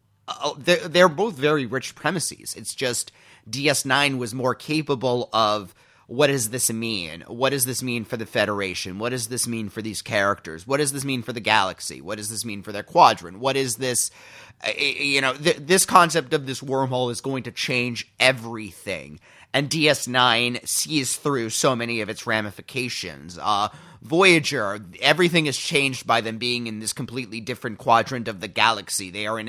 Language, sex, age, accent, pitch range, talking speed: English, male, 30-49, American, 110-145 Hz, 180 wpm